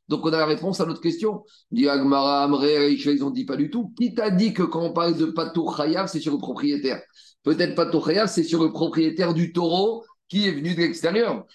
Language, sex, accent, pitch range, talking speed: French, male, French, 155-200 Hz, 220 wpm